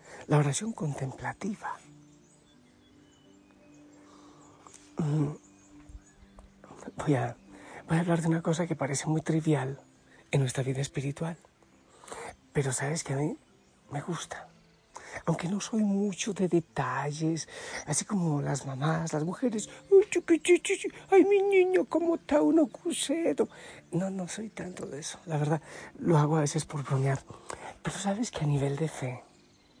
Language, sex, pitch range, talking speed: Spanish, male, 130-180 Hz, 135 wpm